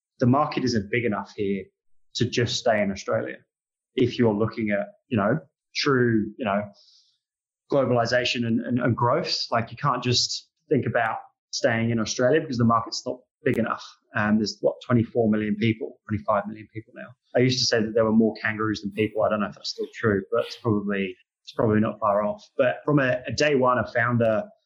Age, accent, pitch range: 20-39, British, 110-125 Hz